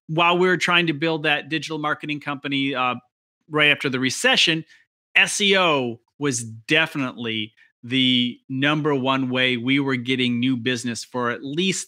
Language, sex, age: English, male, 30-49